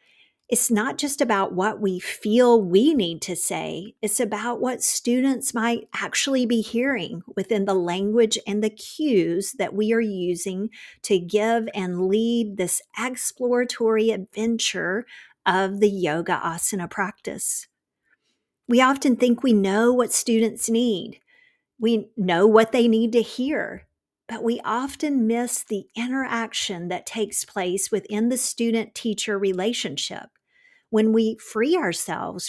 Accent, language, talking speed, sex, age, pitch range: American, English, 135 wpm, female, 50-69, 205-245 Hz